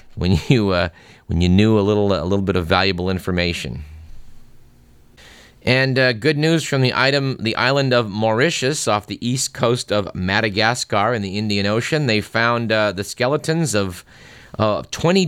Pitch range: 105-130 Hz